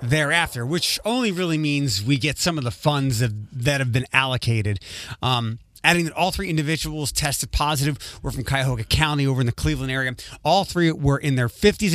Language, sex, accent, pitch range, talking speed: English, male, American, 130-165 Hz, 195 wpm